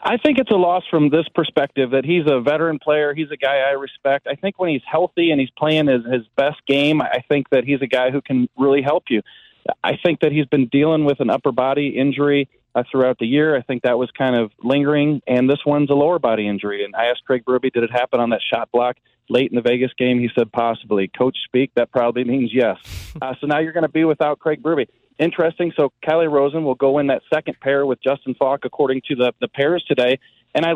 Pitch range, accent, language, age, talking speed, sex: 130-160 Hz, American, English, 40-59, 250 wpm, male